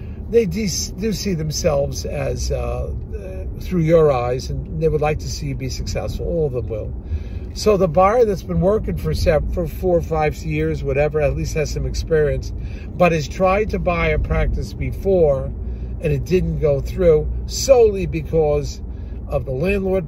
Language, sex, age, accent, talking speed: English, male, 50-69, American, 170 wpm